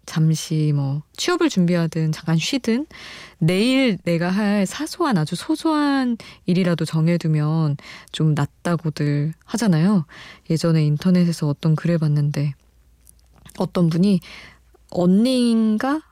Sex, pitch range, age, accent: female, 155-195 Hz, 20-39, native